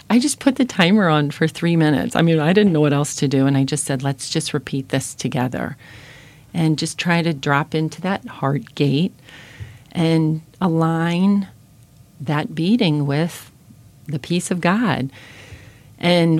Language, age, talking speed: English, 40-59, 170 wpm